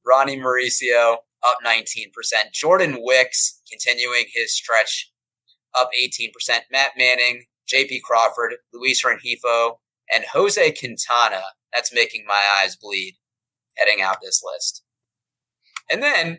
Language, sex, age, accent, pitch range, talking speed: English, male, 30-49, American, 120-175 Hz, 115 wpm